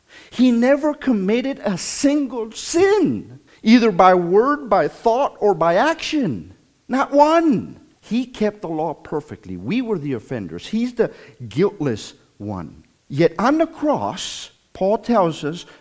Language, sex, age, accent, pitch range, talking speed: English, male, 50-69, American, 135-225 Hz, 135 wpm